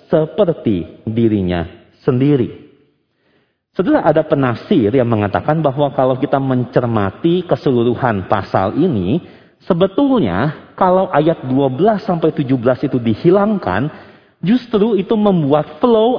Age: 40-59